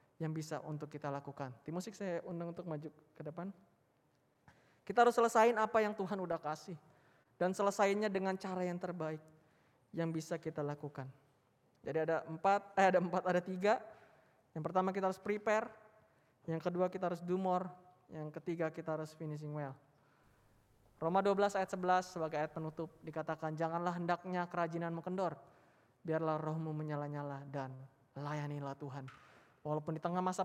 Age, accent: 20-39, native